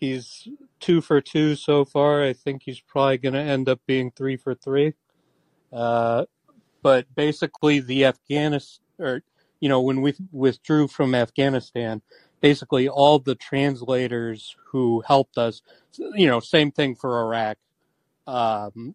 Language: English